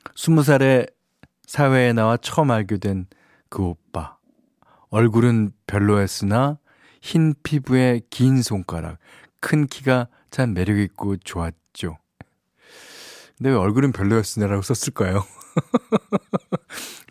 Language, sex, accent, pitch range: Korean, male, native, 100-135 Hz